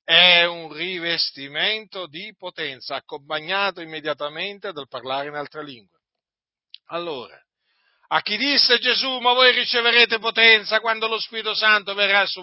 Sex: male